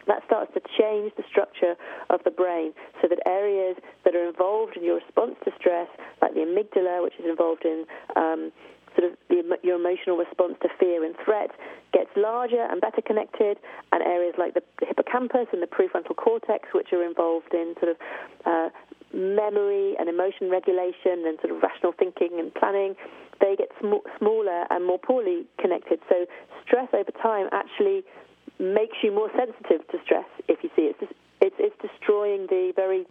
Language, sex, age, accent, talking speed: English, female, 30-49, British, 175 wpm